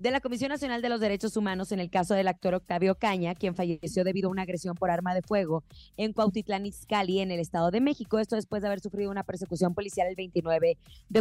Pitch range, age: 180-220 Hz, 20-39